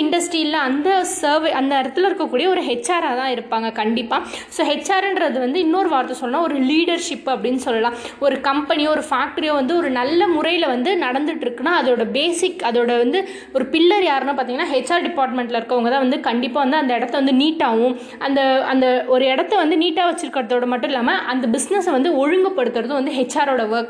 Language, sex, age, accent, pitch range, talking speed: Tamil, female, 20-39, native, 255-335 Hz, 170 wpm